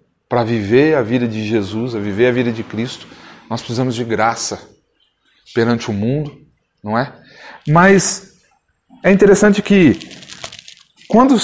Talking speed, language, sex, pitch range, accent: 135 wpm, Portuguese, male, 120-155 Hz, Brazilian